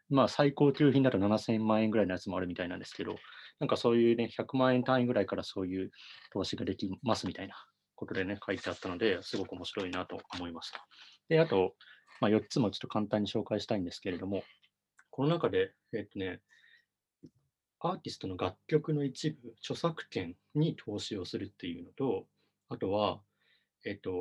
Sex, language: male, Japanese